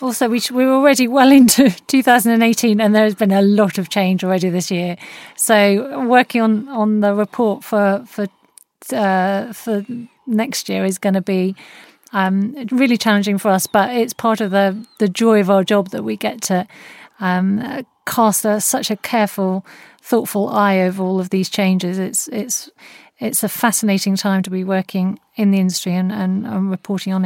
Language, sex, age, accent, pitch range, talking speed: English, female, 40-59, British, 195-235 Hz, 180 wpm